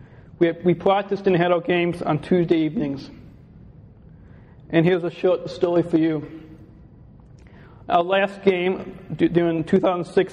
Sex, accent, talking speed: male, American, 140 wpm